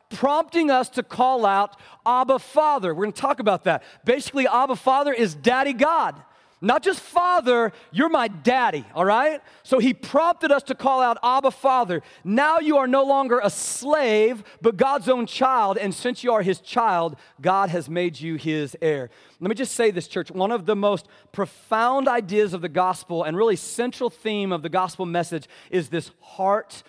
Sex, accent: male, American